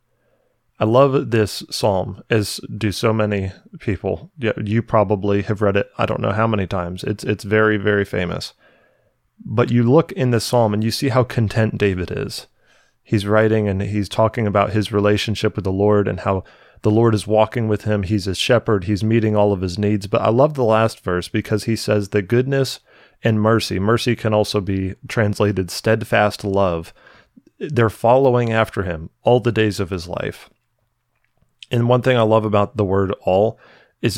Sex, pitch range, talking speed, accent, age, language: male, 100-115 Hz, 185 wpm, American, 30-49, English